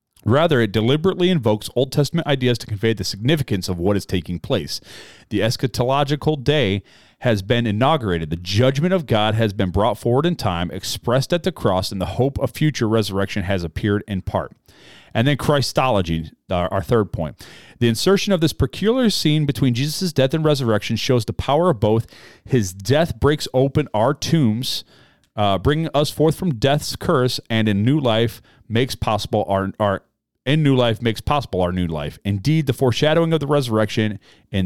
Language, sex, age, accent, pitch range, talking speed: English, male, 40-59, American, 105-145 Hz, 180 wpm